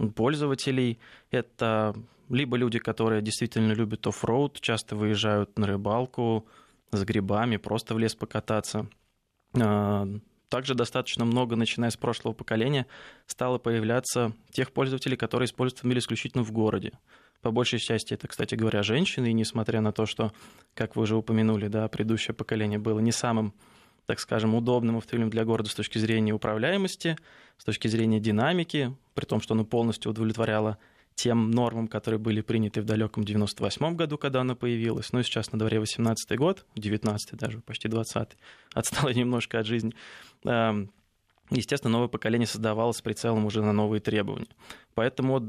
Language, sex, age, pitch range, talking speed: Russian, male, 20-39, 110-120 Hz, 150 wpm